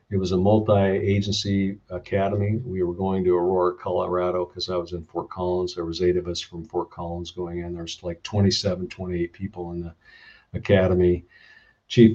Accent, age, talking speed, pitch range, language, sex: American, 50-69, 180 wpm, 90-110 Hz, English, male